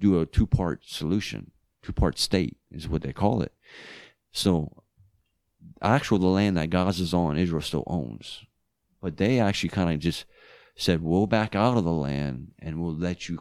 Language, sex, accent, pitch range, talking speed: English, male, American, 80-95 Hz, 175 wpm